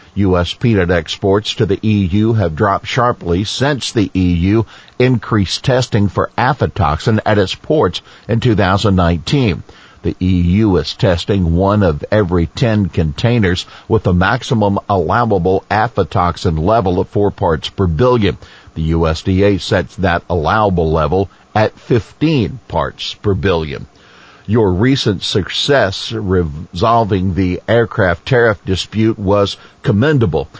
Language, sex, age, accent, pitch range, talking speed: English, male, 50-69, American, 90-115 Hz, 120 wpm